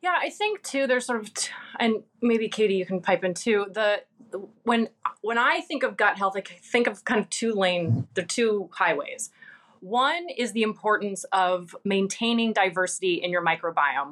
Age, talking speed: 30-49, 190 wpm